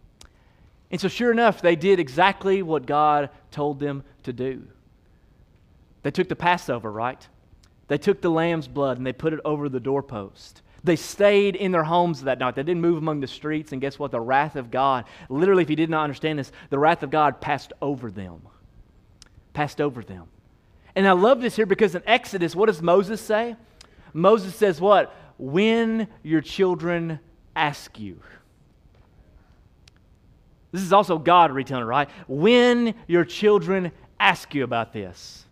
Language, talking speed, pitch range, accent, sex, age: English, 170 wpm, 120-180 Hz, American, male, 30-49